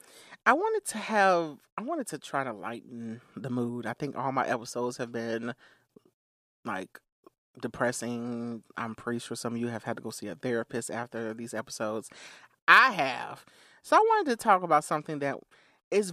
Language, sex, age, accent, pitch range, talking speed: English, male, 30-49, American, 120-170 Hz, 180 wpm